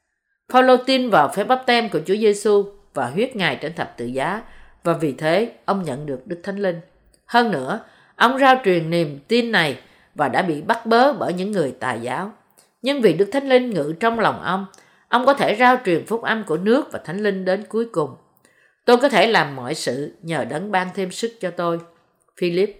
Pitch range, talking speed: 170-230 Hz, 215 wpm